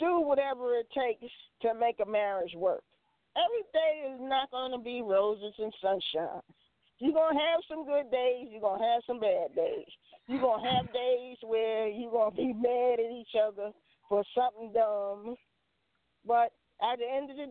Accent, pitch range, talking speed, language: American, 210-265 Hz, 190 wpm, English